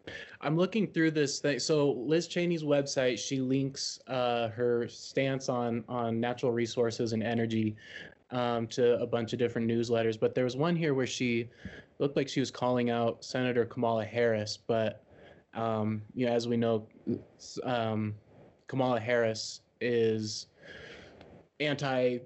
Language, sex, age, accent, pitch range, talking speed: English, male, 20-39, American, 110-130 Hz, 150 wpm